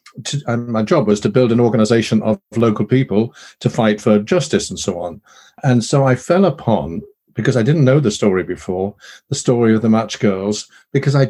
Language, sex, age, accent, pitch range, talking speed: English, male, 50-69, British, 110-140 Hz, 200 wpm